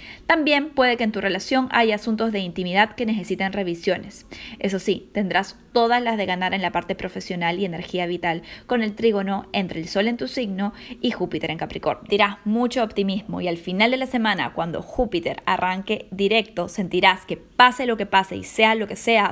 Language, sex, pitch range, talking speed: Spanish, female, 190-235 Hz, 200 wpm